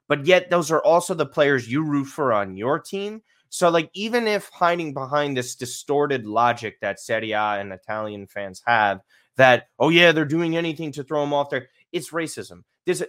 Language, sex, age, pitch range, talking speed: English, male, 20-39, 115-160 Hz, 190 wpm